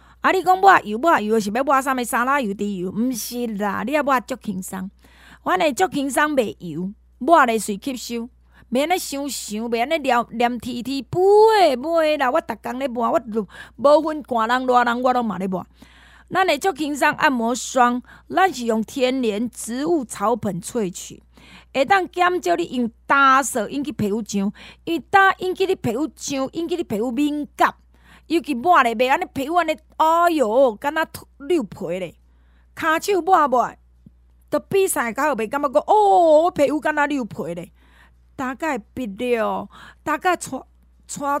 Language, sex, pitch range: Chinese, female, 225-315 Hz